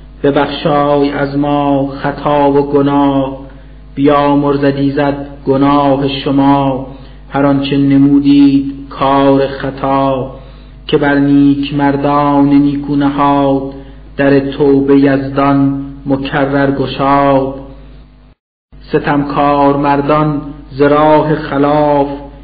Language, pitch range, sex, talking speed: Persian, 140-145 Hz, male, 85 wpm